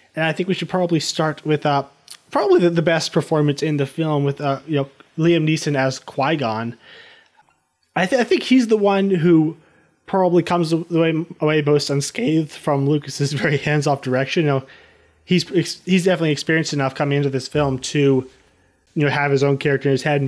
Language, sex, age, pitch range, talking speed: English, male, 20-39, 135-165 Hz, 200 wpm